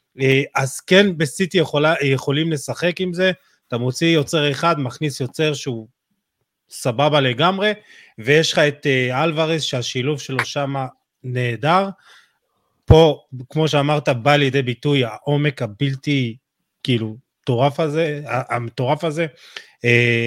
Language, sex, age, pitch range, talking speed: Hebrew, male, 30-49, 125-160 Hz, 110 wpm